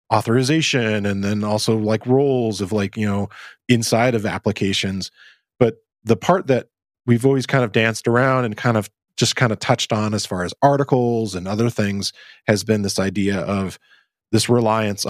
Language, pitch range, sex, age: English, 100-125 Hz, male, 20-39